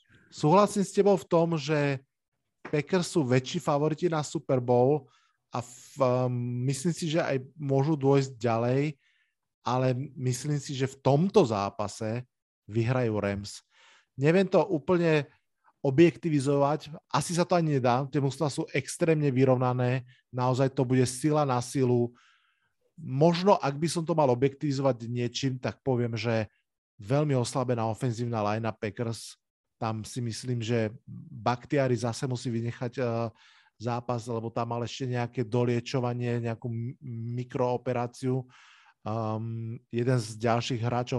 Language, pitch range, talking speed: Slovak, 120-145 Hz, 130 wpm